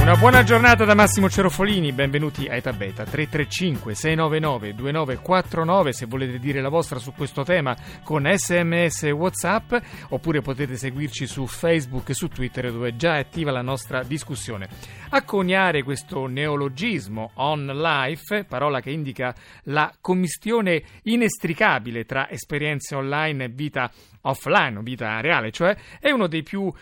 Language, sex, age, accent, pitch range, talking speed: Italian, male, 40-59, native, 125-170 Hz, 140 wpm